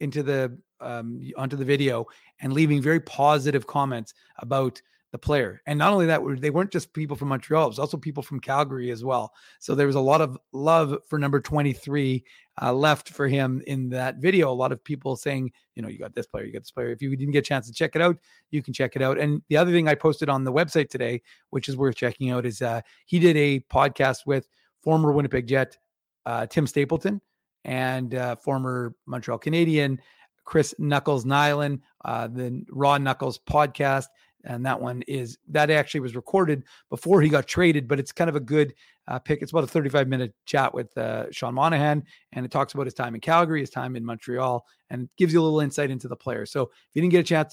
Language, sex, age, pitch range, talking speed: English, male, 30-49, 130-150 Hz, 220 wpm